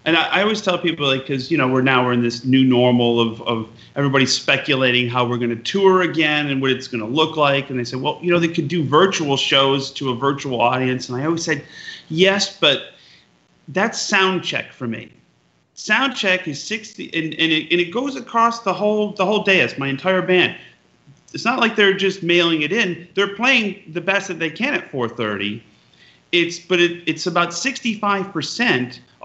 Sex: male